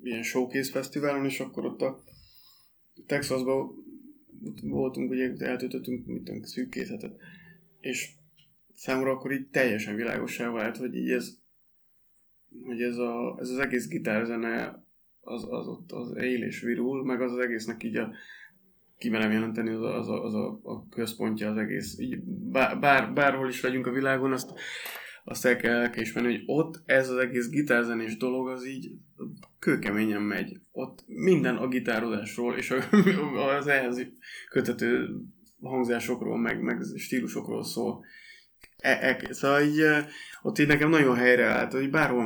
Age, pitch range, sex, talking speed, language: 20-39, 120-145 Hz, male, 145 wpm, Hungarian